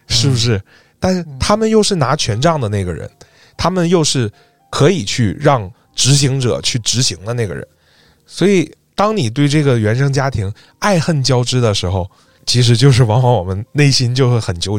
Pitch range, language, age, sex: 100-130 Hz, Chinese, 20-39, male